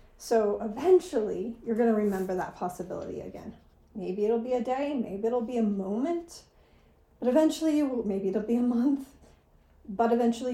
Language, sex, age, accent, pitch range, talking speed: English, female, 30-49, American, 205-260 Hz, 155 wpm